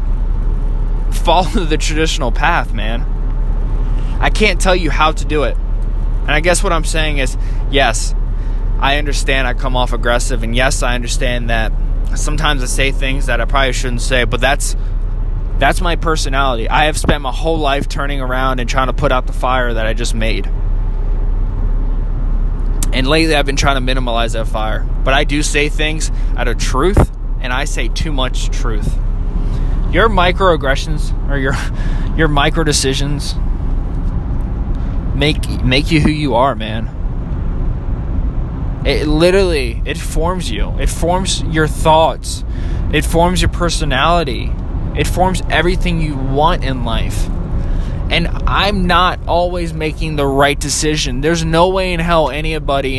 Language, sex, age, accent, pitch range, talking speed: English, male, 20-39, American, 110-150 Hz, 155 wpm